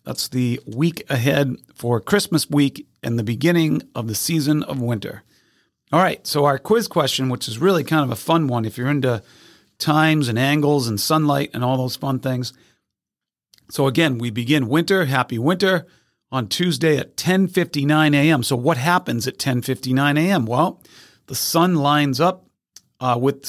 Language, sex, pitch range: English, male, 130-155 Hz